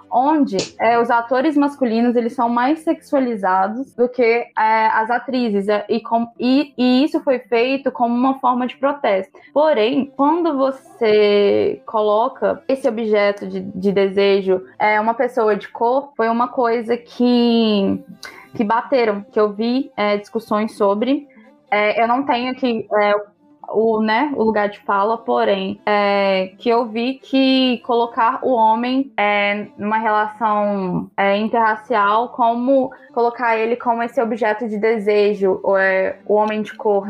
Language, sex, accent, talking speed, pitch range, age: Portuguese, female, Brazilian, 135 wpm, 210-250 Hz, 10-29